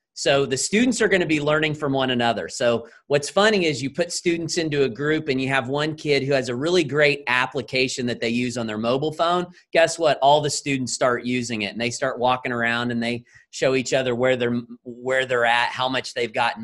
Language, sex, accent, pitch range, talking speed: English, male, American, 120-150 Hz, 240 wpm